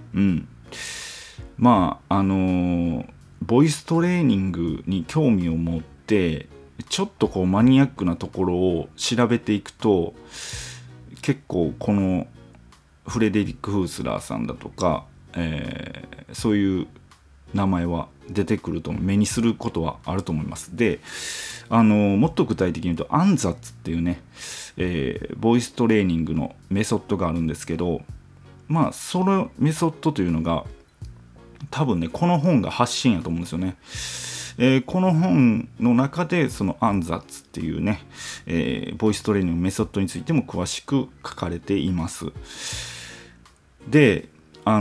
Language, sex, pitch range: Japanese, male, 85-120 Hz